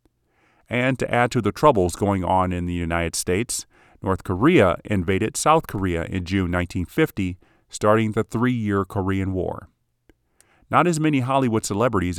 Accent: American